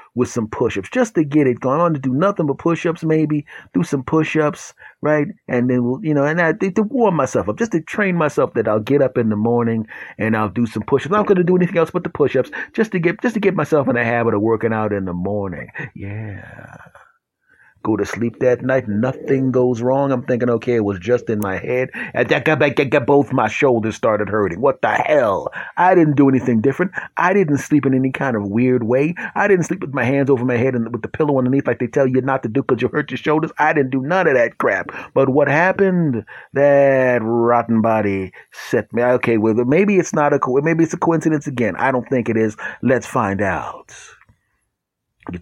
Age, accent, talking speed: 30-49, American, 225 wpm